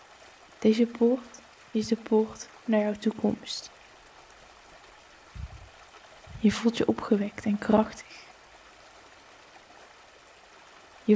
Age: 20-39